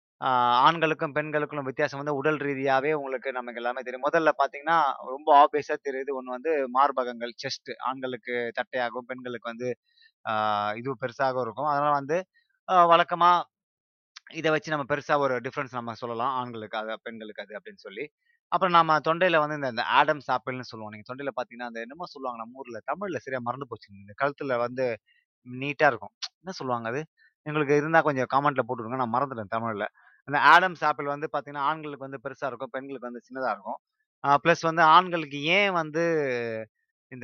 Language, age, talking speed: Tamil, 20-39, 160 wpm